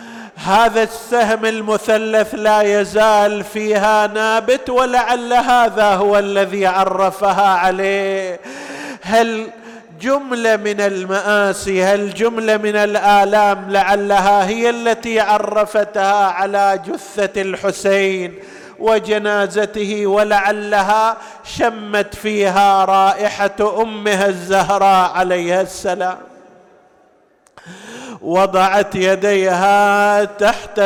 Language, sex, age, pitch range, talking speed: Arabic, male, 50-69, 195-220 Hz, 80 wpm